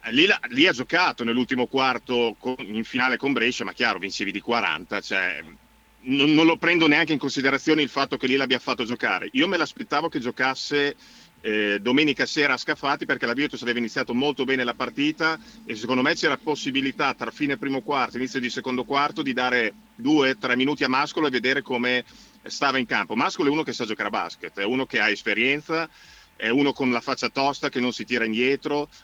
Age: 40-59